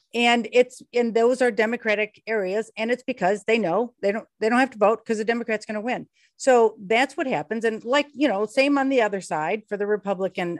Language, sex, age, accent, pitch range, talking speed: English, female, 50-69, American, 195-250 Hz, 230 wpm